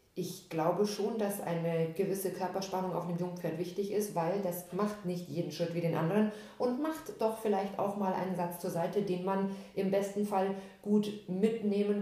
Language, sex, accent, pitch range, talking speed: German, female, German, 165-195 Hz, 190 wpm